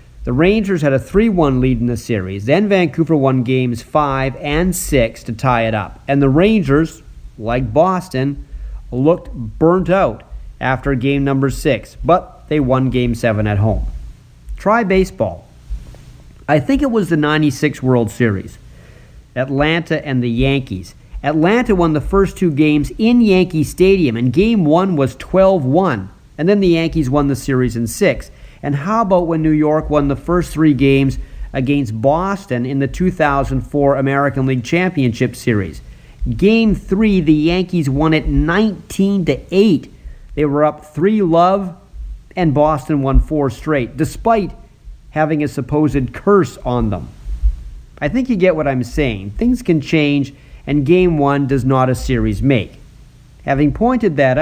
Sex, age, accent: male, 40-59, American